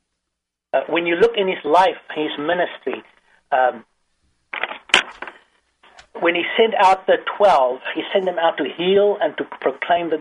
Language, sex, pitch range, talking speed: English, male, 145-195 Hz, 145 wpm